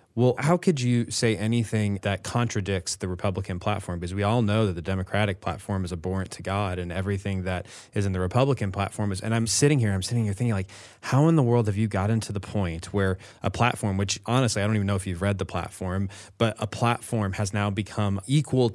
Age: 20-39